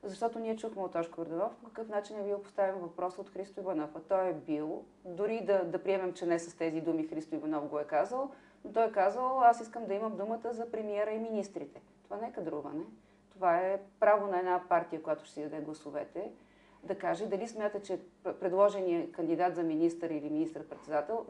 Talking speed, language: 205 wpm, Bulgarian